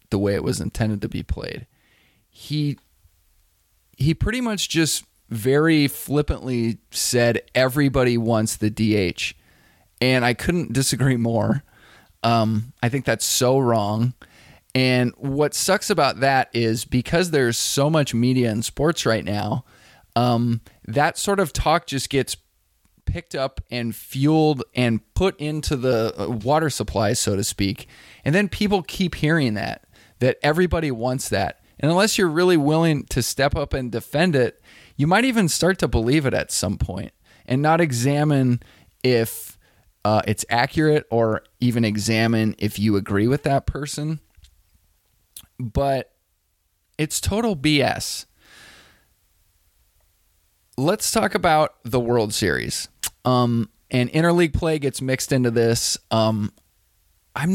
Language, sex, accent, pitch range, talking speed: English, male, American, 105-145 Hz, 140 wpm